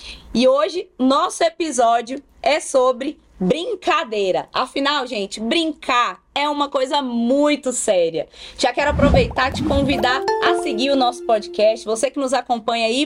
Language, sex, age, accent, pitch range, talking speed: Portuguese, female, 20-39, Brazilian, 220-290 Hz, 140 wpm